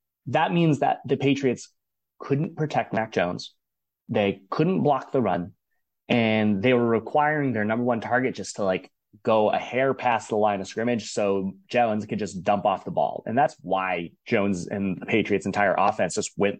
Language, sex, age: English, male, 20-39